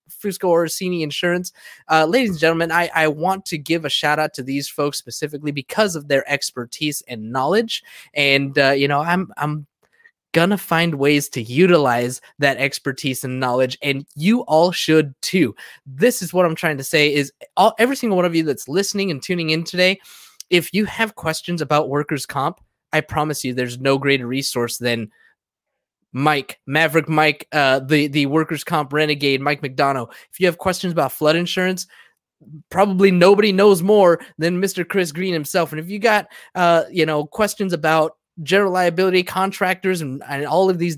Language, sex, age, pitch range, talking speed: English, male, 20-39, 145-185 Hz, 180 wpm